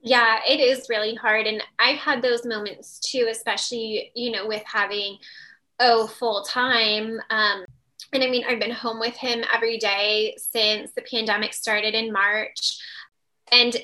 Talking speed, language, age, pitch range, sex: 160 wpm, English, 10-29, 215-245 Hz, female